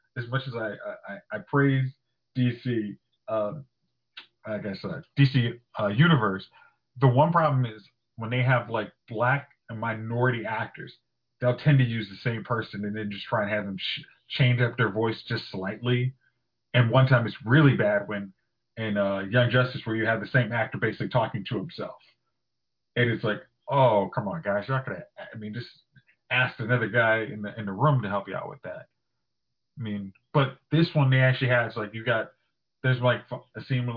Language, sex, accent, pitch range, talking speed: English, male, American, 115-135 Hz, 200 wpm